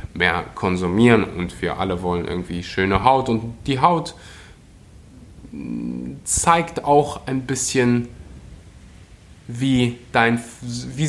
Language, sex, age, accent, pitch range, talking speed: German, male, 20-39, German, 115-145 Hz, 95 wpm